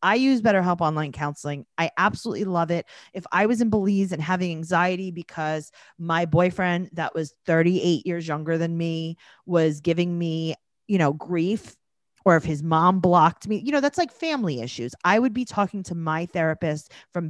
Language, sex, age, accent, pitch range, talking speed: English, female, 30-49, American, 160-215 Hz, 185 wpm